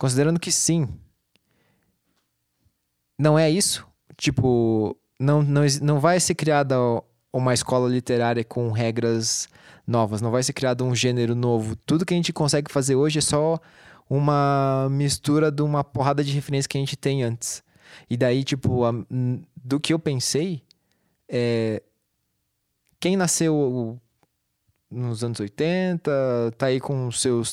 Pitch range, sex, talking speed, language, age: 120-145 Hz, male, 145 wpm, Portuguese, 20-39